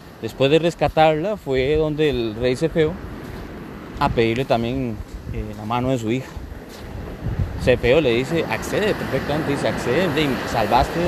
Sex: male